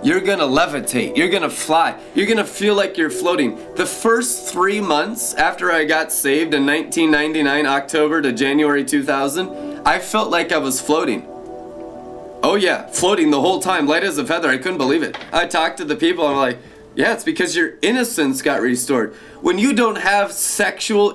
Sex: male